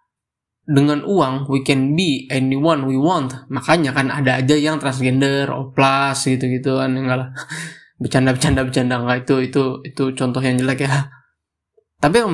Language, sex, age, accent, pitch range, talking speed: Indonesian, male, 20-39, native, 130-155 Hz, 130 wpm